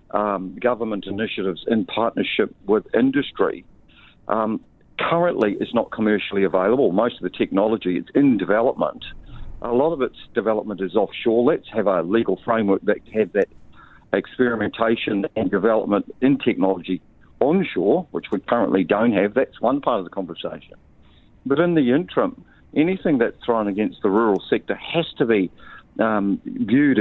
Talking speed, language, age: 150 wpm, English, 50-69